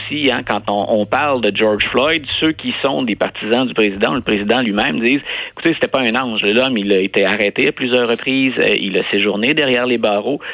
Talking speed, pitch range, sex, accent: 230 wpm, 105-145 Hz, male, Canadian